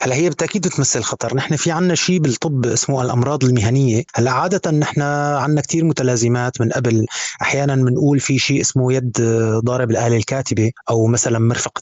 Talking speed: 170 wpm